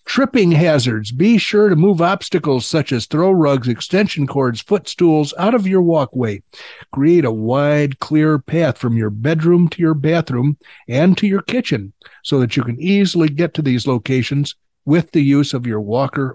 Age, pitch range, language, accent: 50-69, 130-175 Hz, English, American